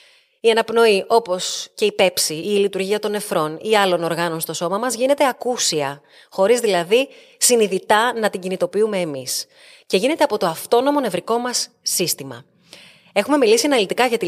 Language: Greek